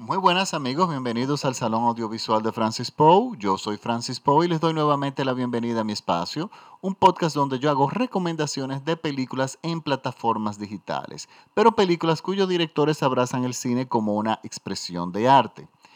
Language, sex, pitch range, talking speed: Spanish, male, 120-160 Hz, 175 wpm